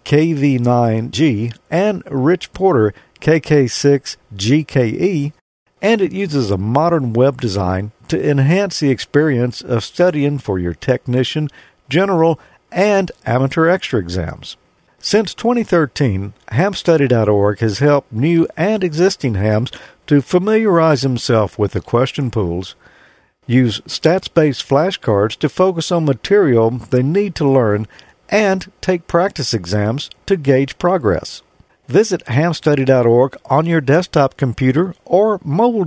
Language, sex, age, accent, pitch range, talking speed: English, male, 50-69, American, 120-175 Hz, 115 wpm